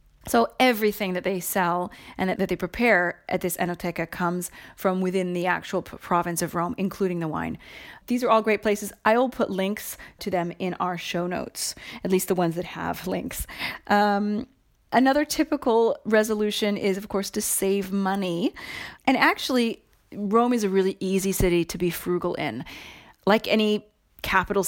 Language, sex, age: English, female, 30-49